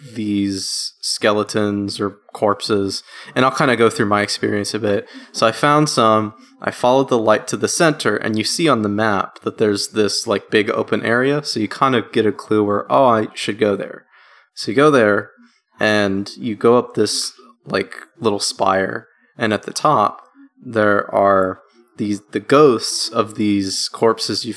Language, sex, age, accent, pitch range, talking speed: English, male, 20-39, American, 105-130 Hz, 185 wpm